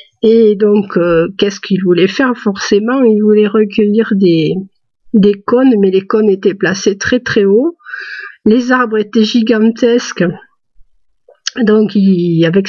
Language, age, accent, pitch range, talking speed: French, 50-69, French, 205-240 Hz, 135 wpm